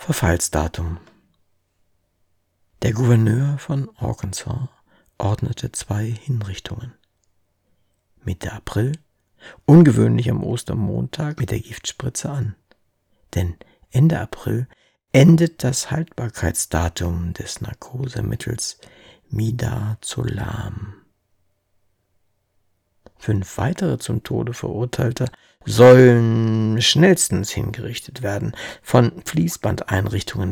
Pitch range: 95-125 Hz